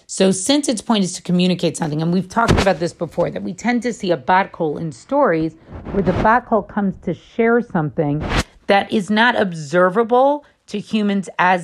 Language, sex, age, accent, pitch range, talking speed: English, female, 40-59, American, 165-215 Hz, 190 wpm